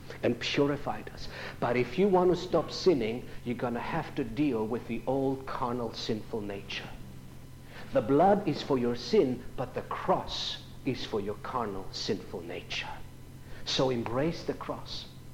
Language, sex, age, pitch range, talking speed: English, male, 60-79, 125-190 Hz, 160 wpm